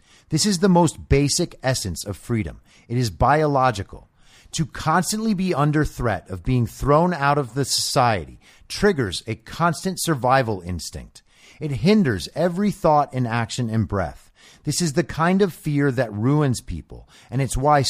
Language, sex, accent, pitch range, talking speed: English, male, American, 110-160 Hz, 160 wpm